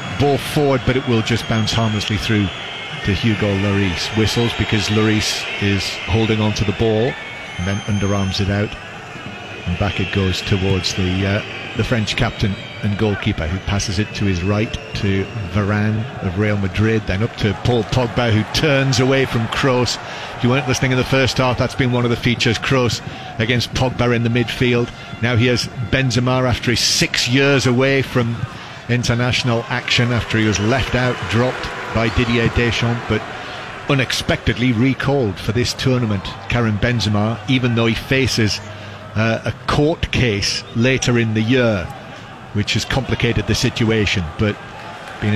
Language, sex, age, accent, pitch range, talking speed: English, male, 40-59, British, 105-125 Hz, 170 wpm